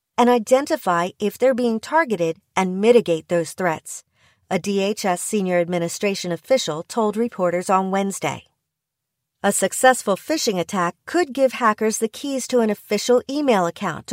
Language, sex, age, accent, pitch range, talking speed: English, female, 40-59, American, 180-230 Hz, 140 wpm